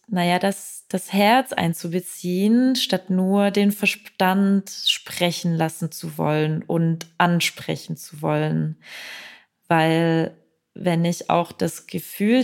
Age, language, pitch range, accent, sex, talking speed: 20-39, German, 165-195 Hz, German, female, 110 wpm